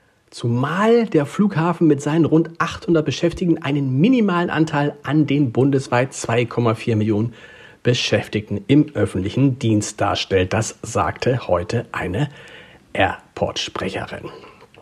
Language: German